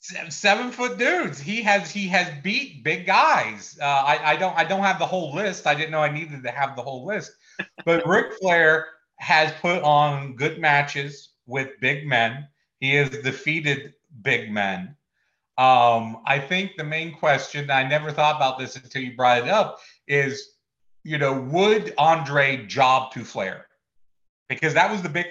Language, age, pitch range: English, 40-59, 125-150 Hz